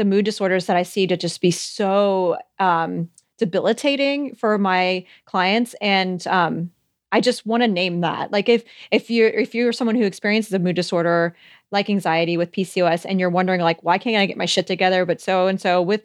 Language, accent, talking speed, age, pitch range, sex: English, American, 205 wpm, 30-49, 180-225 Hz, female